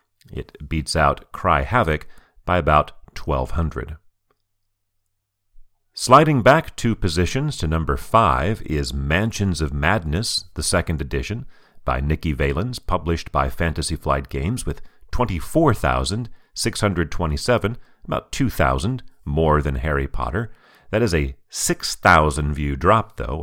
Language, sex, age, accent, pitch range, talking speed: English, male, 40-59, American, 75-105 Hz, 115 wpm